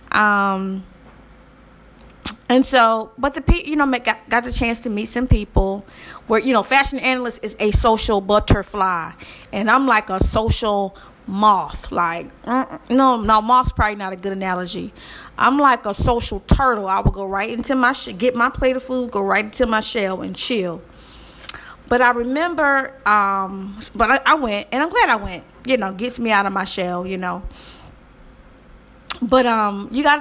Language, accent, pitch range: English, American, 200-255 Hz